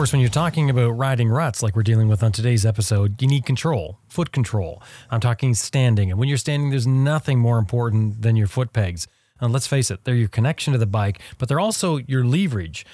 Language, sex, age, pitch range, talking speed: English, male, 30-49, 105-135 Hz, 225 wpm